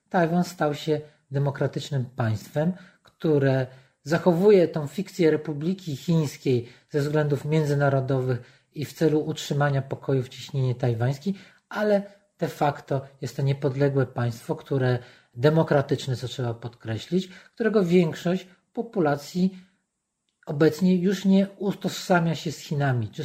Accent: native